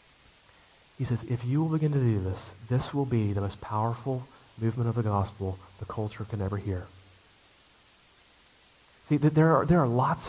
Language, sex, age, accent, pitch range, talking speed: English, male, 30-49, American, 110-135 Hz, 175 wpm